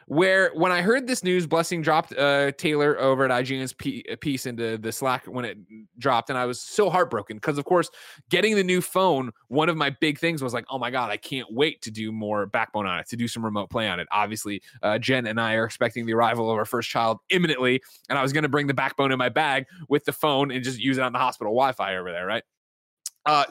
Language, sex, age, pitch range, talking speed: English, male, 20-39, 115-160 Hz, 250 wpm